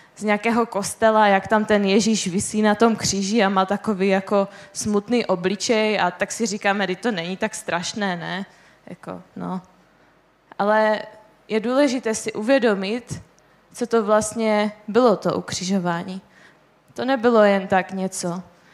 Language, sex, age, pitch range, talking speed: Czech, female, 20-39, 200-230 Hz, 145 wpm